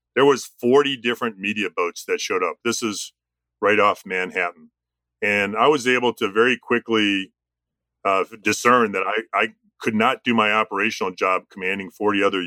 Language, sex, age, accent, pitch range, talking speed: English, male, 40-59, American, 85-115 Hz, 170 wpm